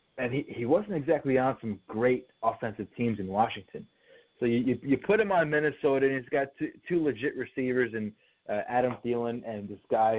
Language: English